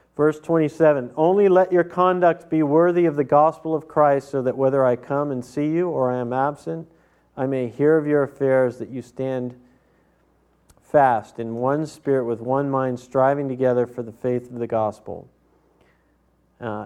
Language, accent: English, American